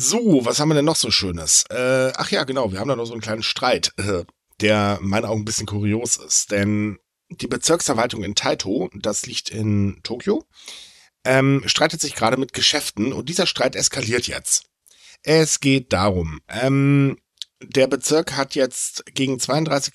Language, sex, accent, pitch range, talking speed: German, male, German, 110-145 Hz, 180 wpm